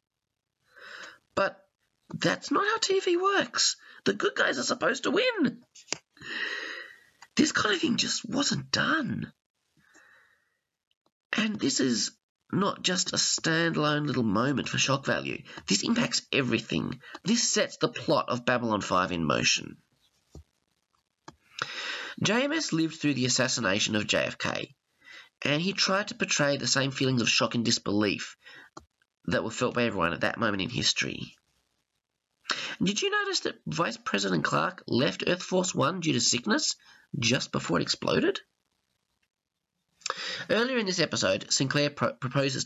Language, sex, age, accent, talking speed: English, male, 30-49, Australian, 135 wpm